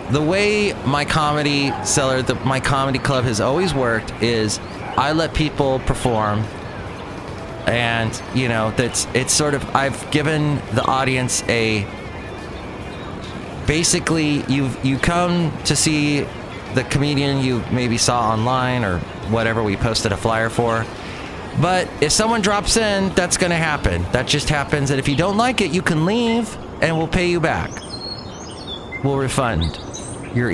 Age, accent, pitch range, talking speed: 30-49, American, 110-150 Hz, 150 wpm